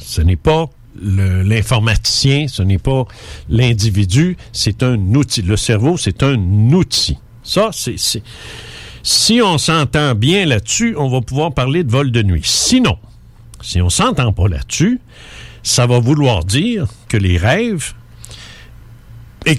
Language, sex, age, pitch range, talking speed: French, male, 60-79, 105-135 Hz, 145 wpm